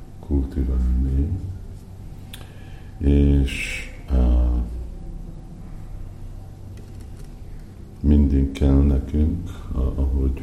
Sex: male